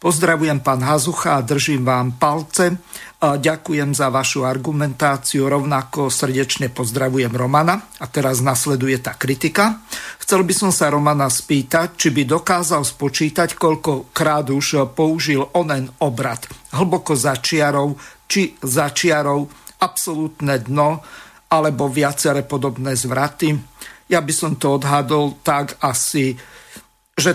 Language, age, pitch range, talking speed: Slovak, 50-69, 135-160 Hz, 120 wpm